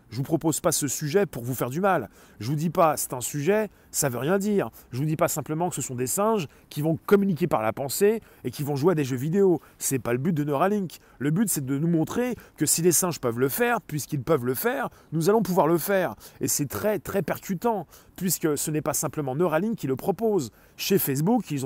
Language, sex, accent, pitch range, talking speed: French, male, French, 140-200 Hz, 255 wpm